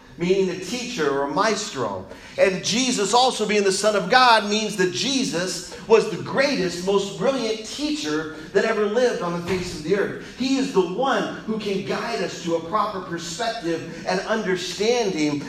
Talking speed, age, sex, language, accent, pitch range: 175 wpm, 40-59, male, English, American, 155-210 Hz